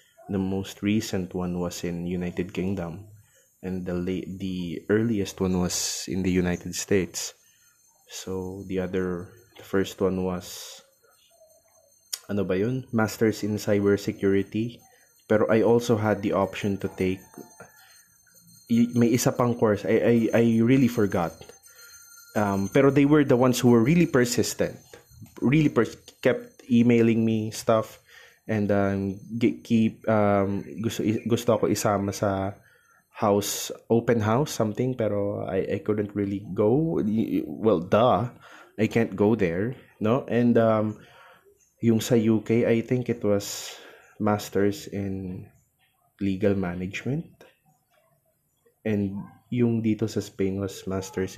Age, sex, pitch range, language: 20-39, male, 95-115 Hz, Filipino